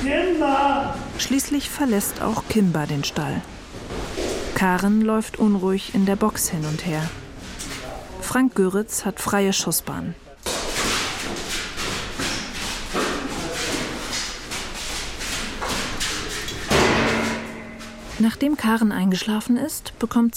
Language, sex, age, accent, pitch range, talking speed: German, female, 40-59, German, 180-230 Hz, 75 wpm